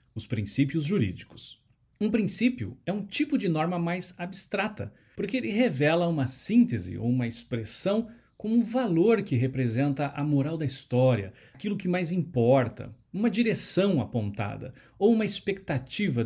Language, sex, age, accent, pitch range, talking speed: Portuguese, male, 50-69, Brazilian, 120-190 Hz, 145 wpm